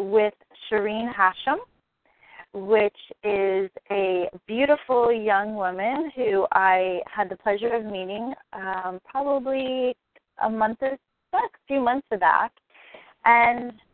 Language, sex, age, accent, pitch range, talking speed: English, female, 30-49, American, 195-235 Hz, 110 wpm